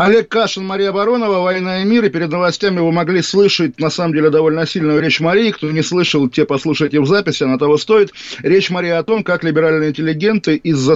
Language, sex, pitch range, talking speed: Russian, male, 150-190 Hz, 210 wpm